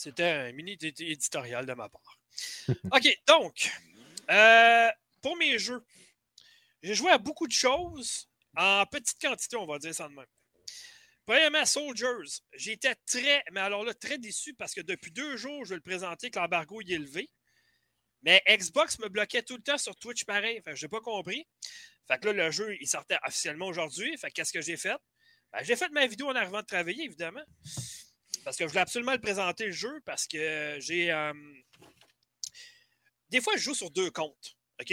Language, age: French, 30-49